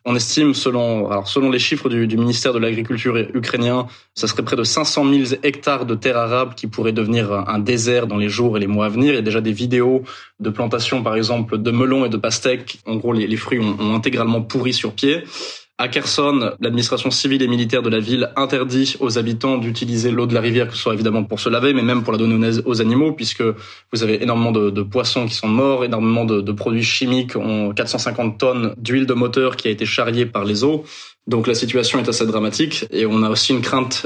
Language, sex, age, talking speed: French, male, 20-39, 235 wpm